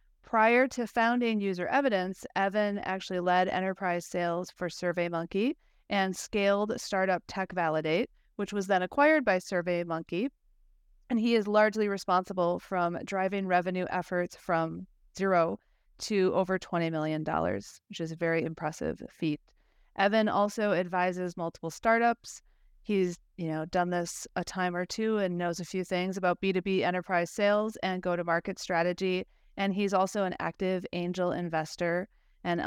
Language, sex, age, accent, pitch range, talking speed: English, female, 30-49, American, 175-205 Hz, 140 wpm